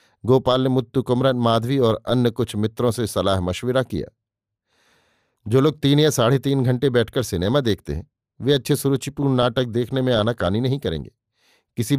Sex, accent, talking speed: male, native, 170 wpm